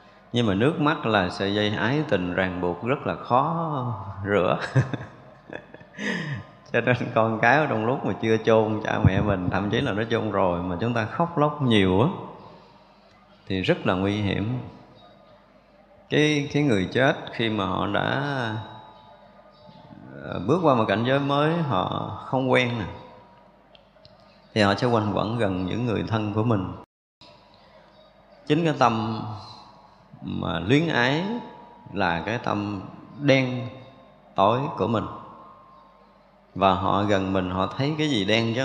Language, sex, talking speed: Vietnamese, male, 150 wpm